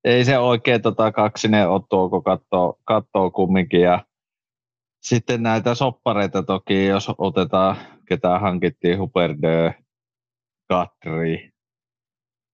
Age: 20-39